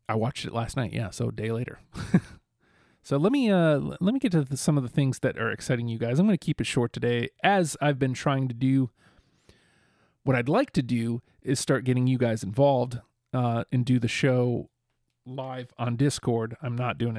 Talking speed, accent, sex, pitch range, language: 220 wpm, American, male, 120-140 Hz, English